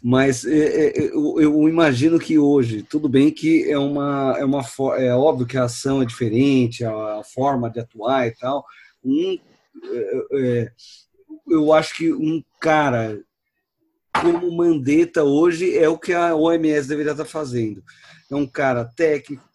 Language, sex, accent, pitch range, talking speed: Portuguese, male, Brazilian, 135-195 Hz, 145 wpm